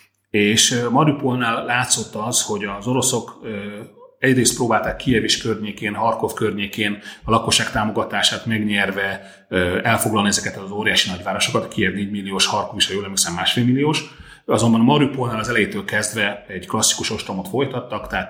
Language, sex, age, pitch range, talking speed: Hungarian, male, 30-49, 100-125 Hz, 140 wpm